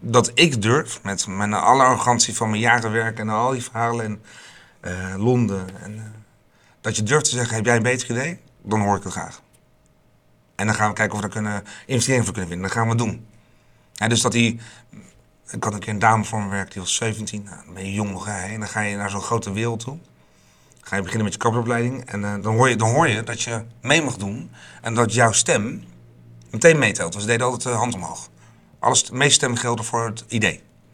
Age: 40-59